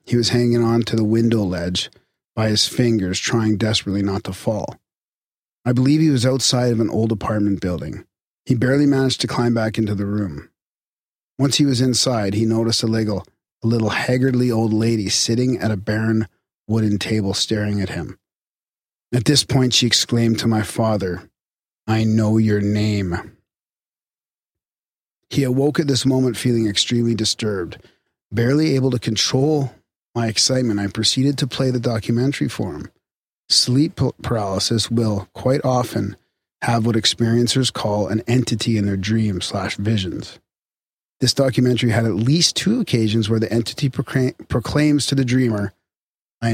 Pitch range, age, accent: 105-125 Hz, 40-59, American